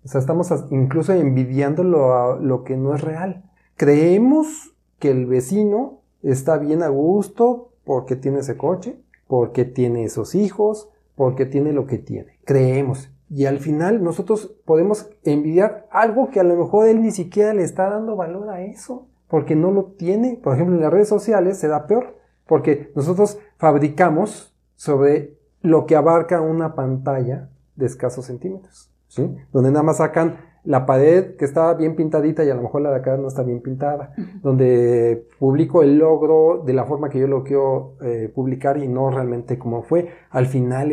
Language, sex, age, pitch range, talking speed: Spanish, male, 40-59, 130-170 Hz, 175 wpm